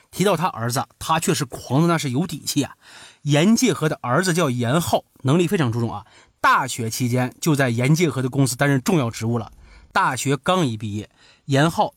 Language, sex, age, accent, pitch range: Chinese, male, 30-49, native, 125-185 Hz